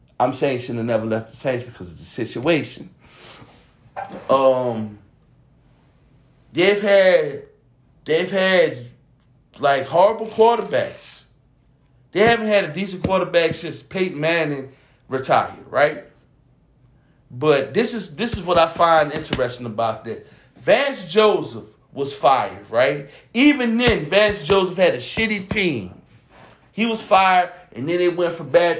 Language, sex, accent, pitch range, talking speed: English, male, American, 135-185 Hz, 135 wpm